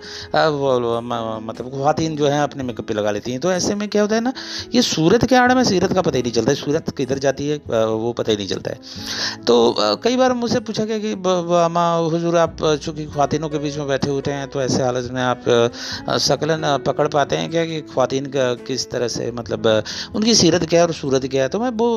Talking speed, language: 80 wpm, Hindi